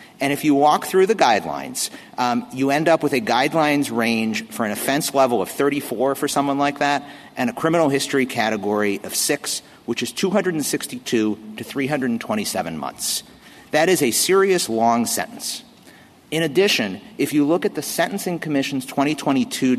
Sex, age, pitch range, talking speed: male, 50-69, 120-160 Hz, 165 wpm